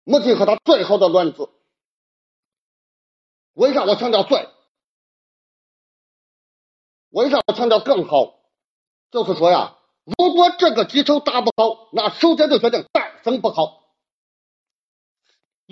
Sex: male